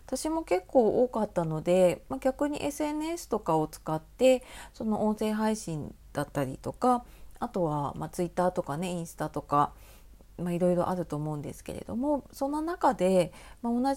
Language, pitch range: Japanese, 160-225 Hz